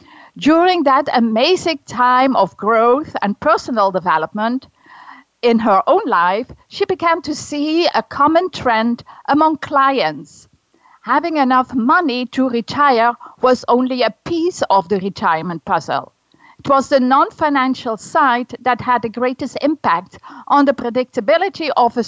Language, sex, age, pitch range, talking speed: English, female, 50-69, 230-305 Hz, 135 wpm